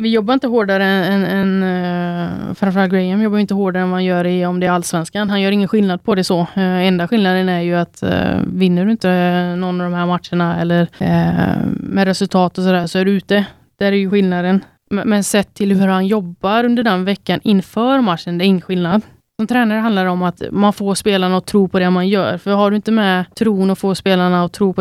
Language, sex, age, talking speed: Swedish, female, 20-39, 240 wpm